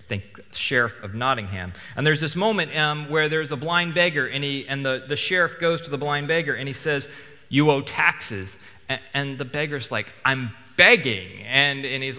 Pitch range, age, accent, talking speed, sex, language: 105-160 Hz, 30-49, American, 200 wpm, male, English